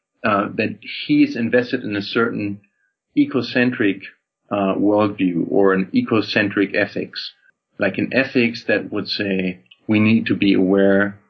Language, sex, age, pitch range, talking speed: English, male, 40-59, 100-120 Hz, 135 wpm